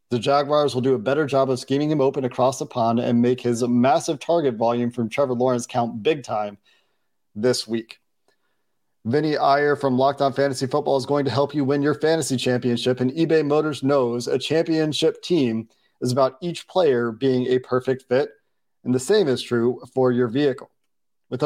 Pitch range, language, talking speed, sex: 125-155 Hz, English, 185 wpm, male